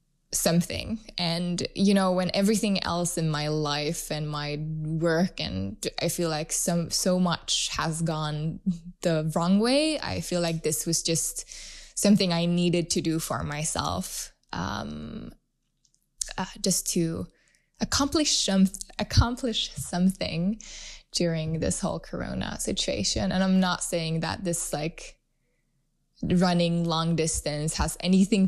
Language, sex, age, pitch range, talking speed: English, female, 10-29, 160-185 Hz, 135 wpm